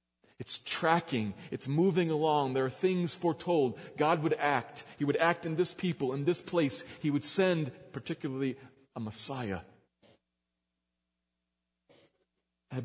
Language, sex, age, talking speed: English, male, 40-59, 130 wpm